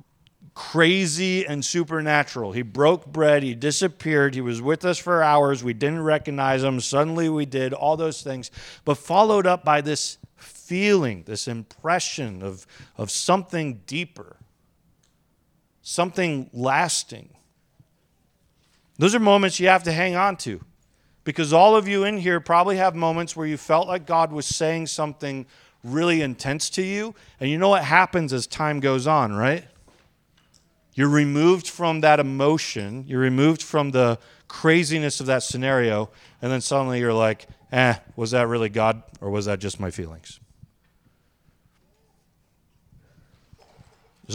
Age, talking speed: 40-59, 145 wpm